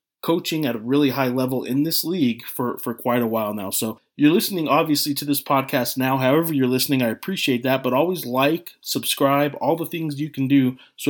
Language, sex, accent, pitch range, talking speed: English, male, American, 125-145 Hz, 215 wpm